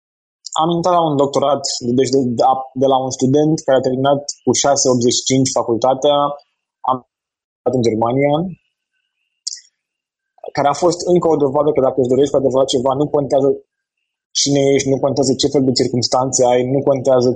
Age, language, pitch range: 20-39, Romanian, 130-160 Hz